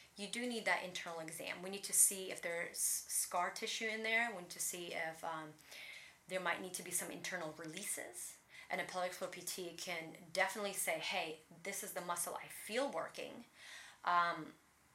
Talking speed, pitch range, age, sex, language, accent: 190 wpm, 170-205 Hz, 30-49, female, English, American